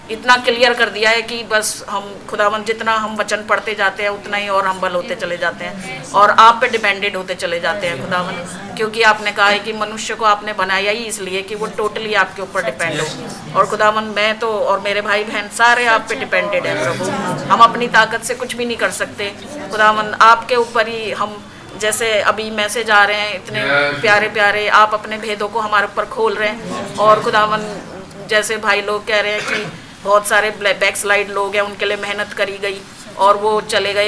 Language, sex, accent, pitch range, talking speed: English, female, Indian, 200-225 Hz, 185 wpm